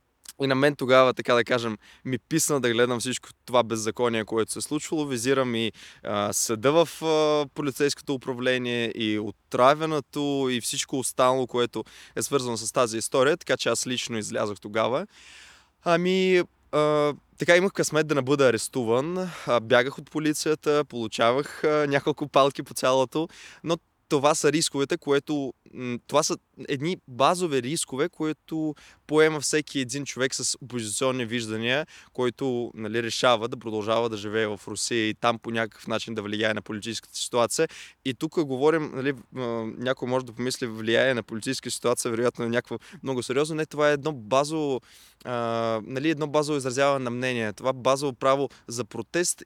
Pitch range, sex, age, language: 120-150 Hz, male, 20-39, Bulgarian